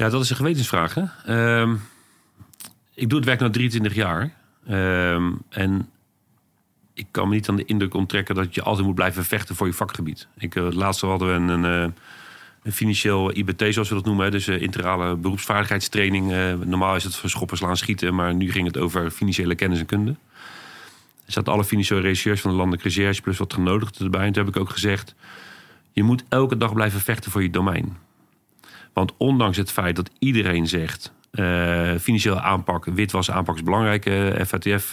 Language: Dutch